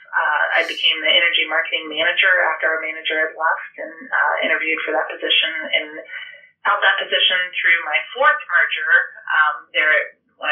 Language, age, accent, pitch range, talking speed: English, 30-49, American, 165-230 Hz, 165 wpm